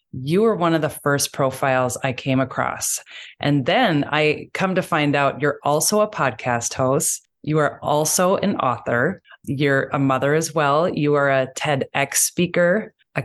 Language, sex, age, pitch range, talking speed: English, female, 20-39, 140-165 Hz, 170 wpm